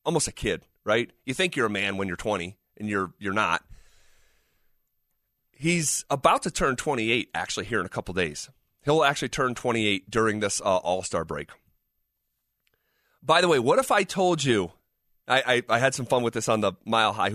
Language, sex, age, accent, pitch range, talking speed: English, male, 30-49, American, 100-125 Hz, 200 wpm